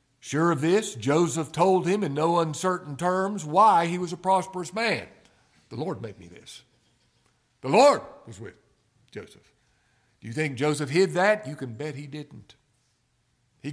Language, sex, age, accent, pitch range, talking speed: English, male, 60-79, American, 130-180 Hz, 165 wpm